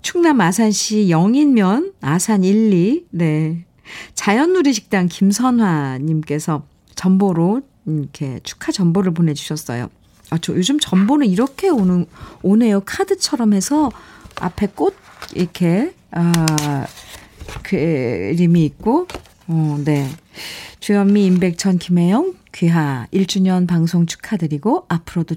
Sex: female